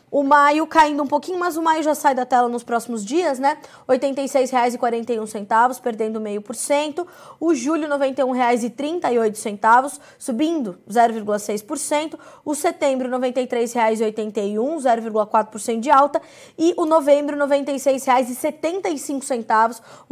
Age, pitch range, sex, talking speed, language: 20-39, 230-280 Hz, female, 115 wpm, Portuguese